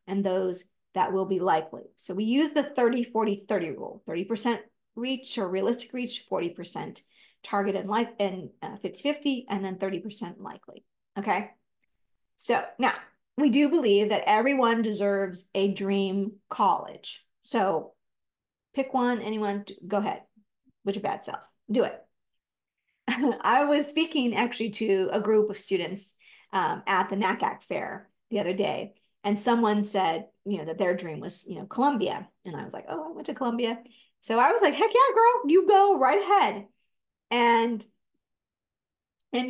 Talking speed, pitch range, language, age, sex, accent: 155 wpm, 200-245 Hz, English, 40-59, female, American